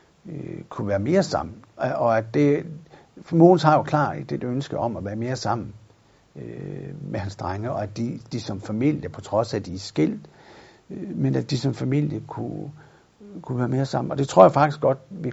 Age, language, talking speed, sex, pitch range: 60-79, Danish, 210 wpm, male, 105-140 Hz